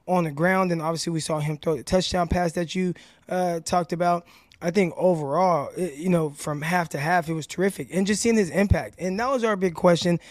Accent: American